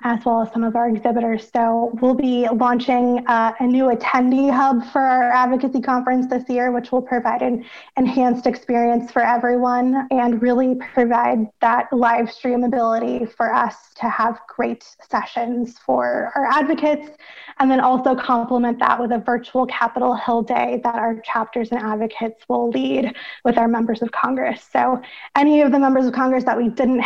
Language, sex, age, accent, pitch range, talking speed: English, female, 20-39, American, 235-255 Hz, 175 wpm